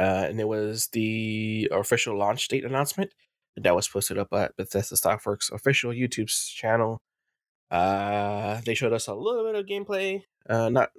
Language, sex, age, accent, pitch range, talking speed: English, male, 20-39, American, 100-120 Hz, 165 wpm